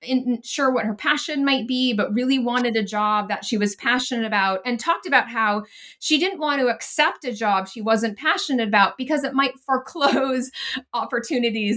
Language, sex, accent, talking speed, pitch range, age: English, female, American, 185 wpm, 205-270 Hz, 20-39